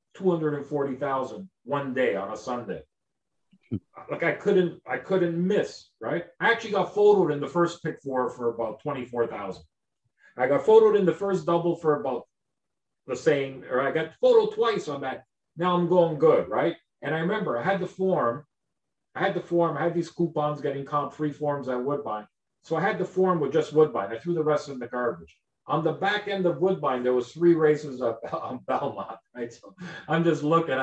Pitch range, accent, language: 135-185 Hz, American, English